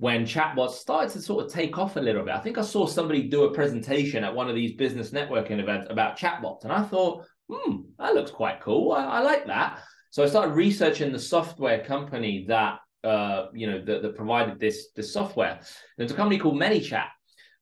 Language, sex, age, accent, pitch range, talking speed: English, male, 20-39, British, 115-150 Hz, 215 wpm